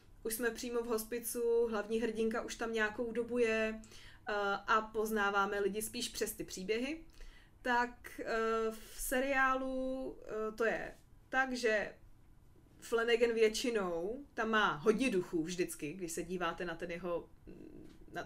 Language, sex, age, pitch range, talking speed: Czech, female, 20-39, 190-245 Hz, 130 wpm